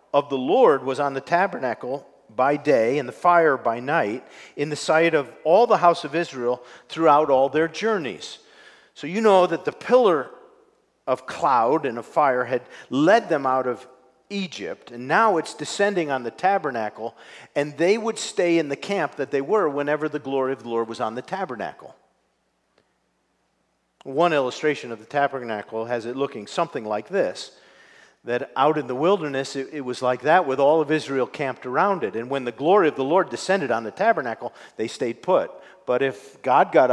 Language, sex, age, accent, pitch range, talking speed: English, male, 50-69, American, 125-180 Hz, 190 wpm